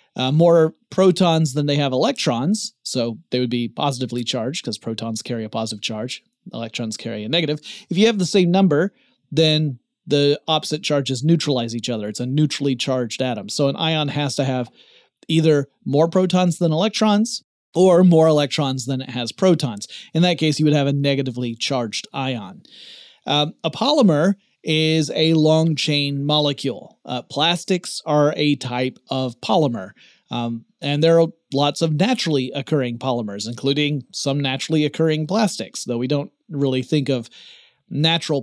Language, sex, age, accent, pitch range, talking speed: English, male, 30-49, American, 130-170 Hz, 160 wpm